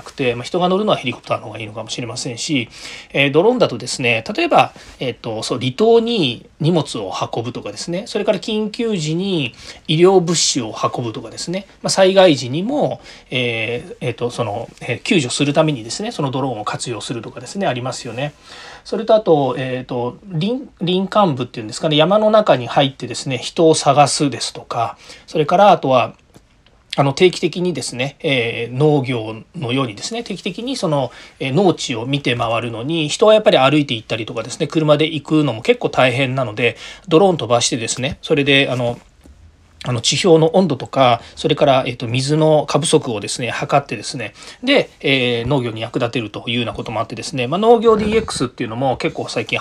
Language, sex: Japanese, male